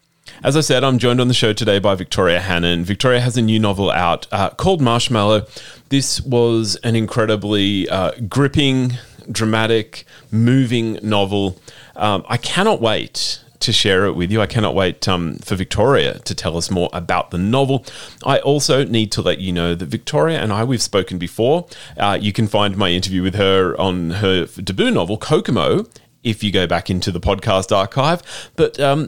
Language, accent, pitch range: English, Australian, 100-145 Hz